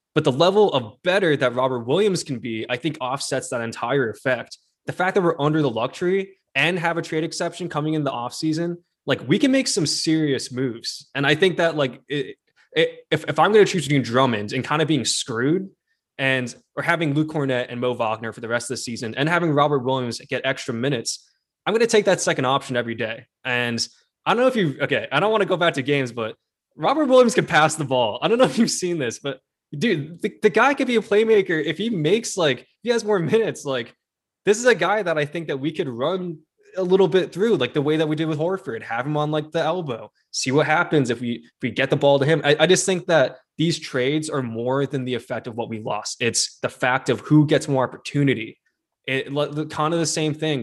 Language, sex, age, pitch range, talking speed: English, male, 20-39, 125-170 Hz, 245 wpm